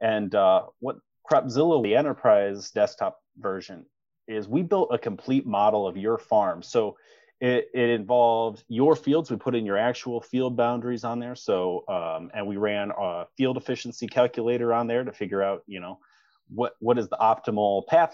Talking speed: 180 wpm